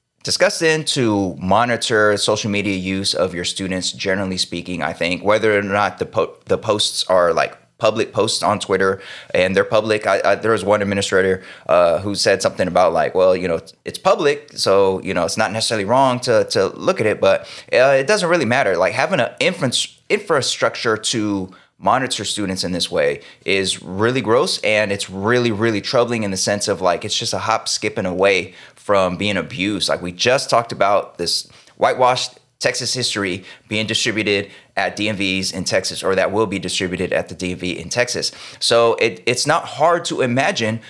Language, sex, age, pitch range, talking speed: English, male, 20-39, 95-130 Hz, 195 wpm